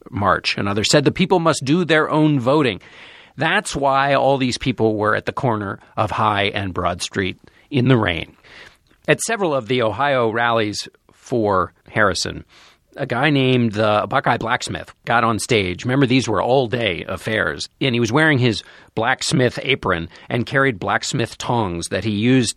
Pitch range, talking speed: 105-140 Hz, 170 wpm